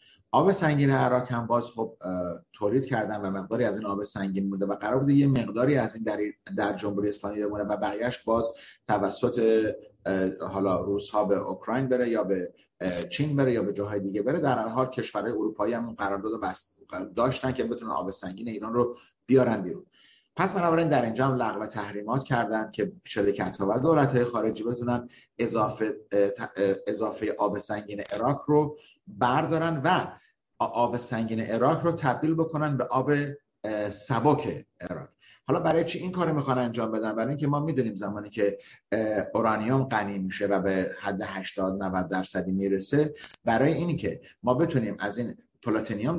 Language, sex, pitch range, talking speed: Persian, male, 100-130 Hz, 165 wpm